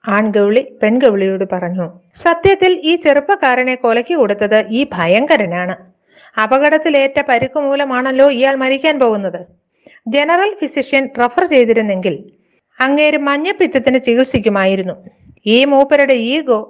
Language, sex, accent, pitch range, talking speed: Malayalam, female, native, 190-260 Hz, 95 wpm